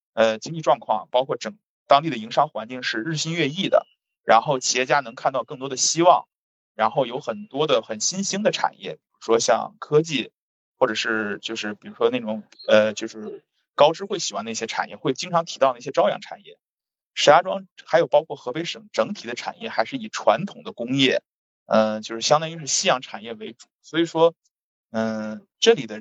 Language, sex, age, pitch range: Chinese, male, 20-39, 120-195 Hz